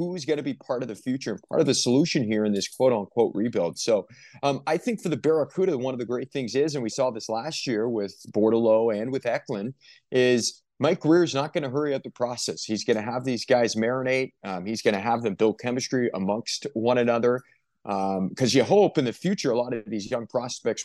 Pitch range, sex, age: 110-140 Hz, male, 30-49